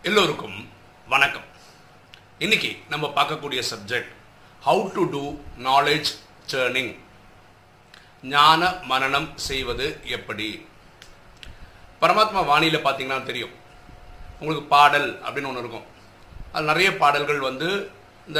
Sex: male